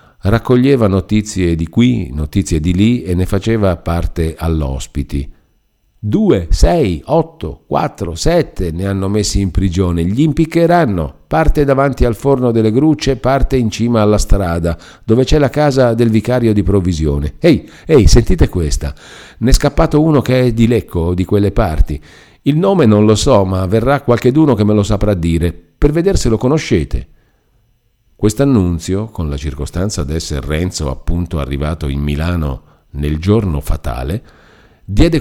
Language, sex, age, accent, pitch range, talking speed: Italian, male, 50-69, native, 85-120 Hz, 155 wpm